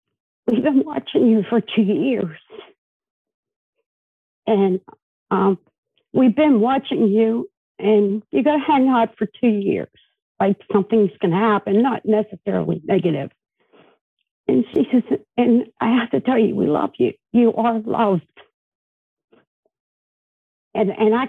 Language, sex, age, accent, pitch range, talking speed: English, female, 60-79, American, 210-295 Hz, 135 wpm